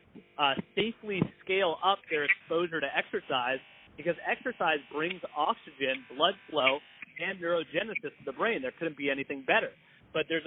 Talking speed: 150 wpm